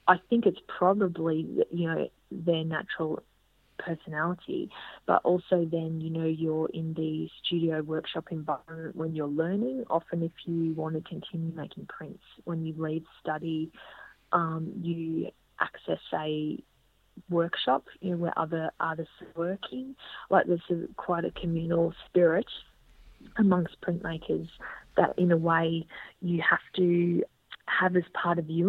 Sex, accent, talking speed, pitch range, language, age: female, Australian, 135 wpm, 160-180 Hz, English, 30-49